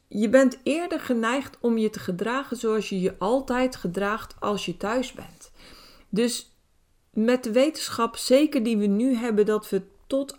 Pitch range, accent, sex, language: 195-245 Hz, Dutch, female, Dutch